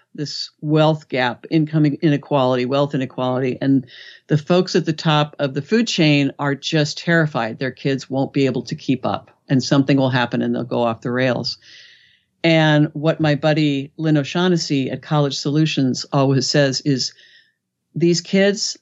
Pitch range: 135-160 Hz